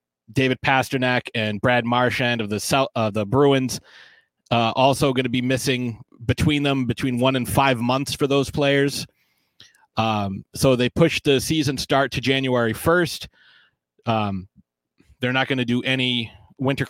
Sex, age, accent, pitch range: male, 30-49, American, 115-145 Hz